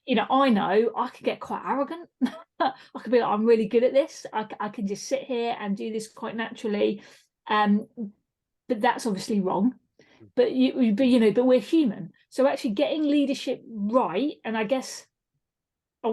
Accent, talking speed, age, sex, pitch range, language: British, 195 wpm, 40-59, female, 210-260 Hz, English